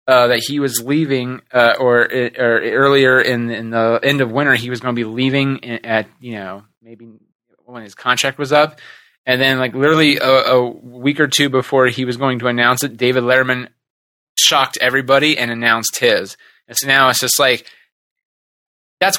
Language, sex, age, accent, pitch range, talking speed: English, male, 20-39, American, 115-135 Hz, 190 wpm